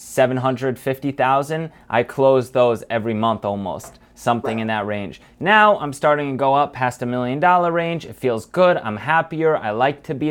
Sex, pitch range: male, 120-160 Hz